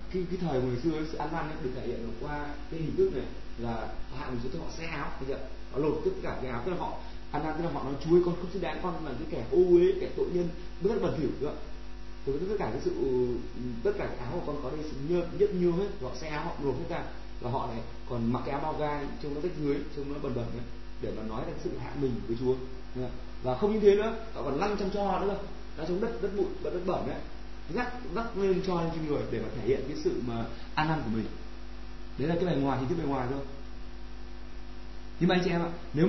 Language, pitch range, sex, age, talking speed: Vietnamese, 120-170 Hz, male, 30-49, 280 wpm